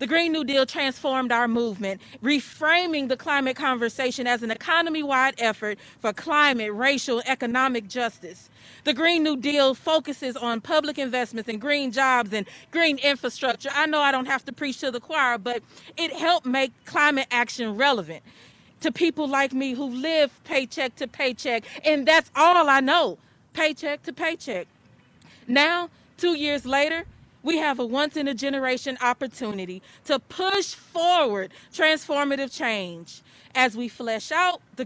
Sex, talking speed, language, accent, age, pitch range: female, 155 wpm, English, American, 40-59, 235-290 Hz